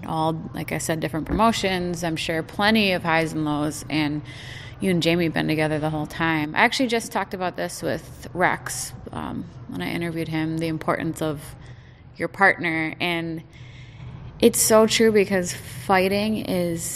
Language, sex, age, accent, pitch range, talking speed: English, female, 20-39, American, 135-180 Hz, 170 wpm